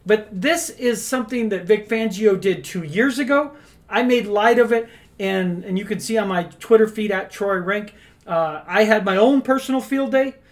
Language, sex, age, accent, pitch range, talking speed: English, male, 40-59, American, 205-255 Hz, 200 wpm